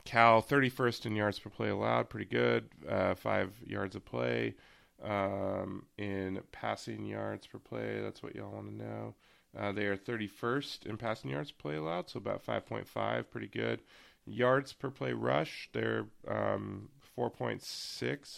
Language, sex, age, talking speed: English, male, 20-39, 155 wpm